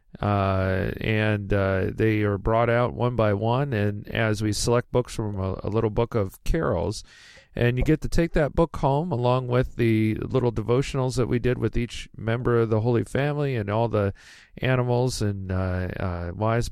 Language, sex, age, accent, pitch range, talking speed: English, male, 40-59, American, 100-125 Hz, 190 wpm